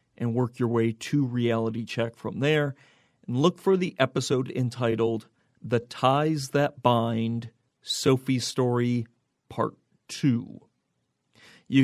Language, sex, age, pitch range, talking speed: English, male, 40-59, 120-145 Hz, 120 wpm